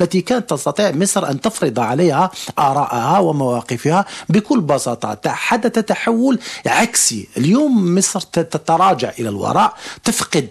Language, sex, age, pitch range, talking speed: Arabic, male, 50-69, 150-210 Hz, 115 wpm